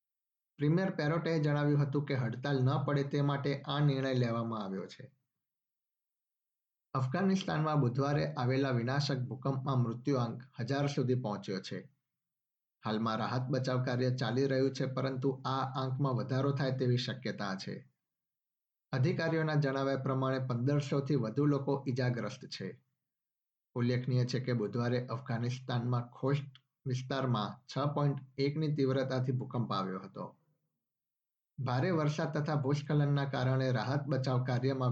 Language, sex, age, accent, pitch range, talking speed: Gujarati, male, 50-69, native, 125-145 Hz, 120 wpm